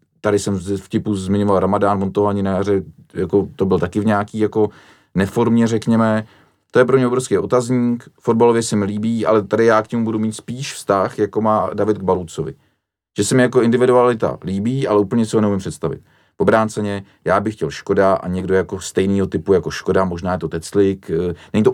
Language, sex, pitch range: Czech, male, 100-120 Hz